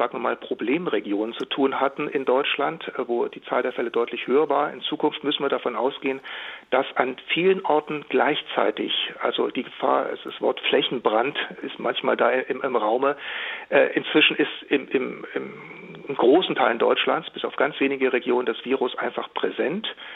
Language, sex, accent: German, male, German